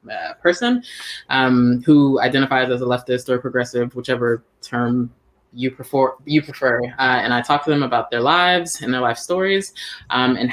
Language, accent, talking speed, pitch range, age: English, American, 175 wpm, 125-145 Hz, 20-39